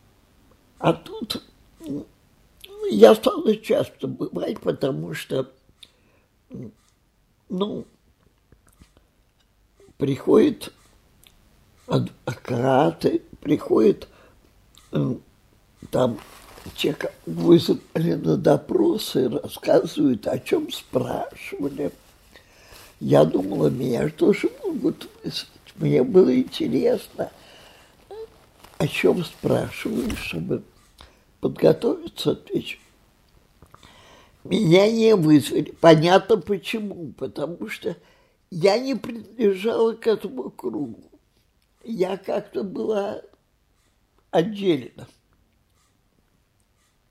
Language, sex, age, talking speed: Russian, male, 60-79, 70 wpm